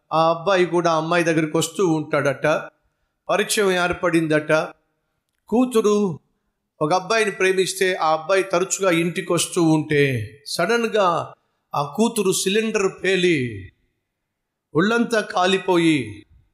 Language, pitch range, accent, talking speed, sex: Telugu, 125-185 Hz, native, 95 wpm, male